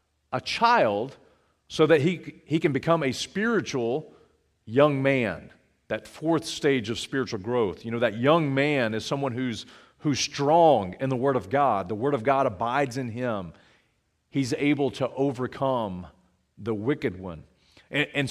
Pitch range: 130-175 Hz